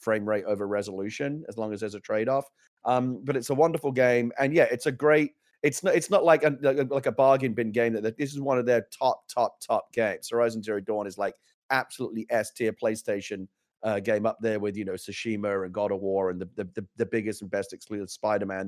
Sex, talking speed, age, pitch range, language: male, 230 wpm, 30-49, 110-140 Hz, English